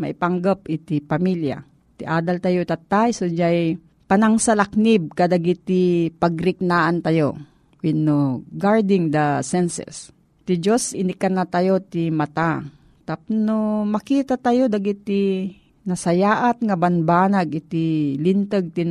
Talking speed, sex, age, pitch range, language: 115 wpm, female, 40-59, 160-205 Hz, Filipino